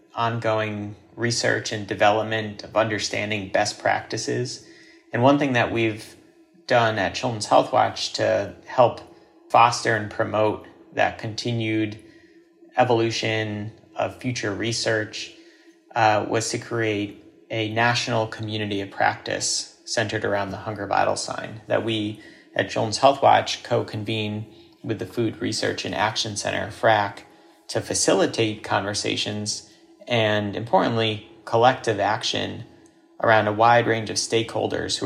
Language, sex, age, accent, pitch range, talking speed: English, male, 40-59, American, 105-125 Hz, 125 wpm